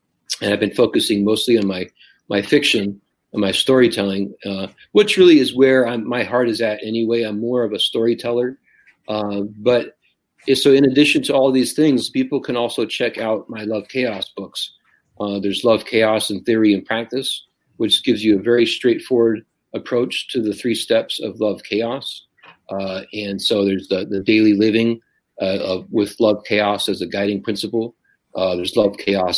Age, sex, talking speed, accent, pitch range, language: 40-59, male, 185 wpm, American, 100-120 Hz, English